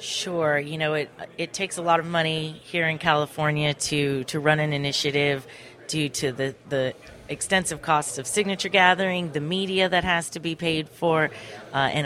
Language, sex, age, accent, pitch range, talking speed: English, female, 30-49, American, 145-170 Hz, 185 wpm